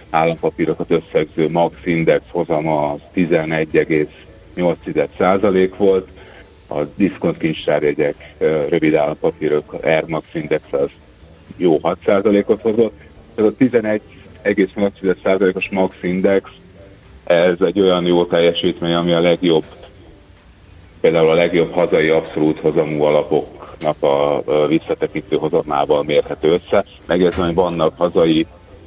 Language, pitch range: Hungarian, 80-95 Hz